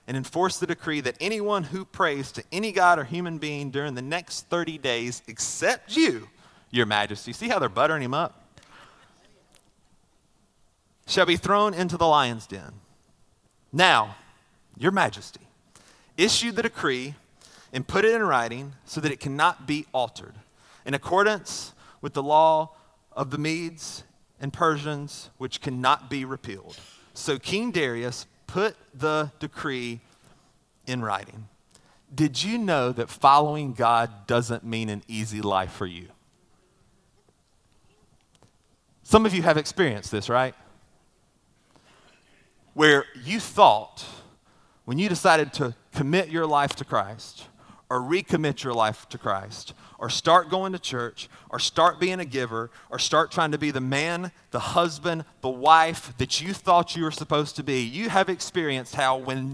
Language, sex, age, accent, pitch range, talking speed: English, male, 30-49, American, 125-175 Hz, 150 wpm